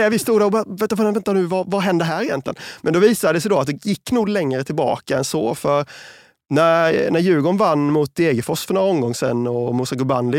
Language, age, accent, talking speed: Swedish, 30-49, native, 230 wpm